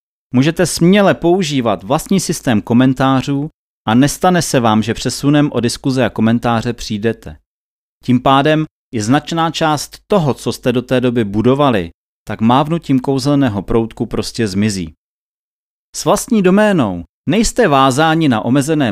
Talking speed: 135 wpm